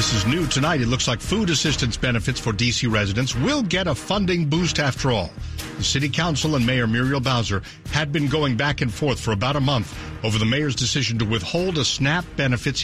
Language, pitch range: English, 110-155 Hz